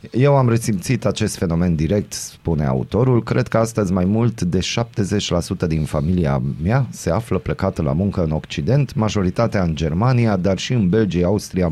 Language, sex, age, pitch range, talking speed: Romanian, male, 30-49, 85-110 Hz, 170 wpm